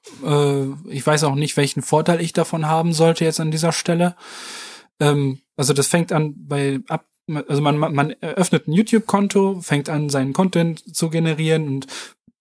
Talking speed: 160 wpm